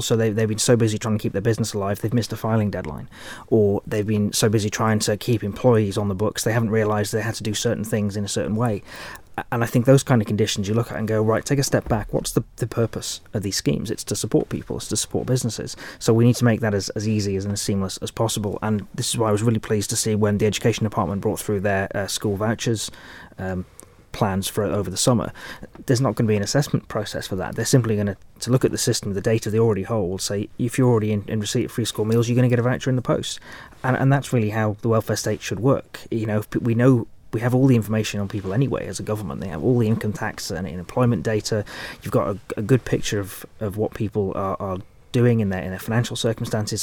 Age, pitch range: 30-49, 105-120 Hz